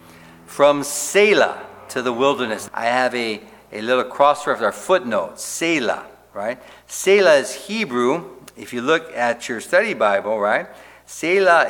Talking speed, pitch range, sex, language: 145 wpm, 100-135 Hz, male, English